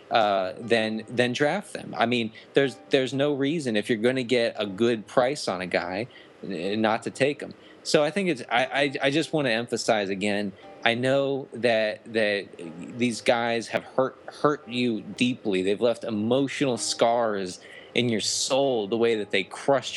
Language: English